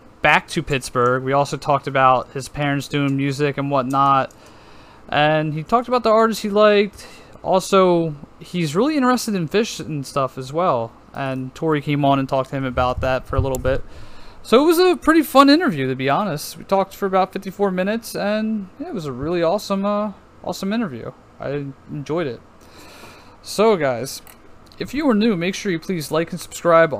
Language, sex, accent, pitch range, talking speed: English, male, American, 135-190 Hz, 190 wpm